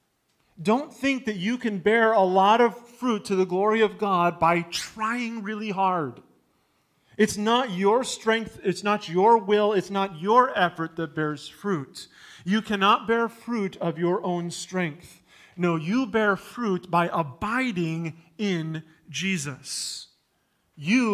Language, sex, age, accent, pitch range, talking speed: English, male, 40-59, American, 155-200 Hz, 145 wpm